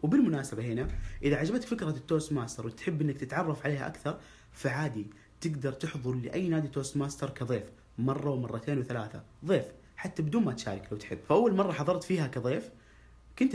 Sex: male